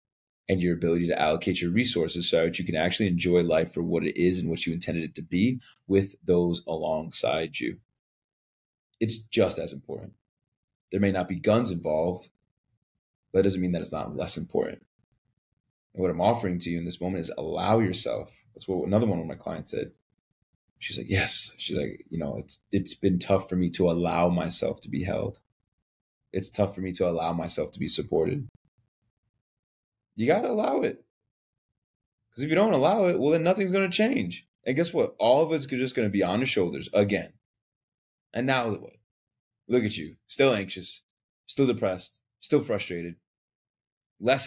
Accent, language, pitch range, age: American, English, 90-115 Hz, 30-49